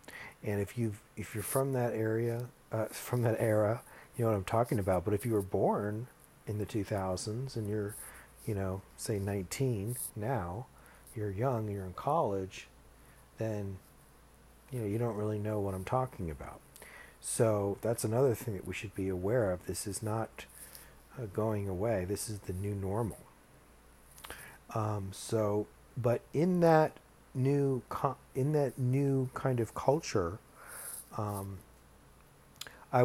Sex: male